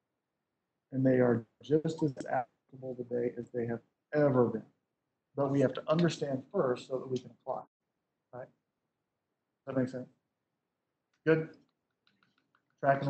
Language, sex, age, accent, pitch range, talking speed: English, male, 50-69, American, 130-160 Hz, 135 wpm